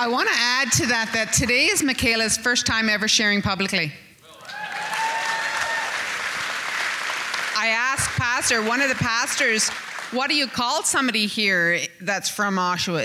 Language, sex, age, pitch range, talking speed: English, female, 30-49, 195-230 Hz, 145 wpm